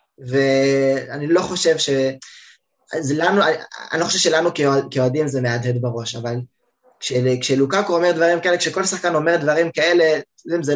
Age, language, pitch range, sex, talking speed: 20-39, Hebrew, 130-170 Hz, male, 135 wpm